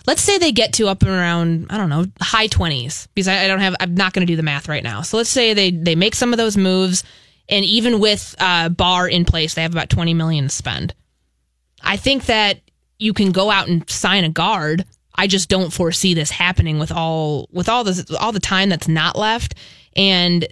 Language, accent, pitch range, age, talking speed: English, American, 165-200 Hz, 20-39, 230 wpm